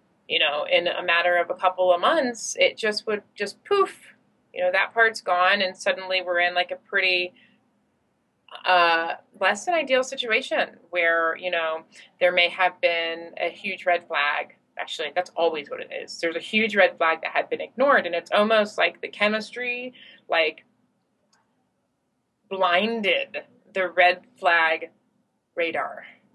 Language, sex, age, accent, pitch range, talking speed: English, female, 20-39, American, 175-235 Hz, 160 wpm